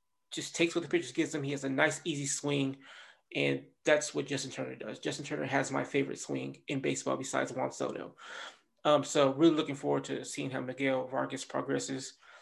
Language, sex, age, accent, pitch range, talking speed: English, male, 20-39, American, 140-155 Hz, 200 wpm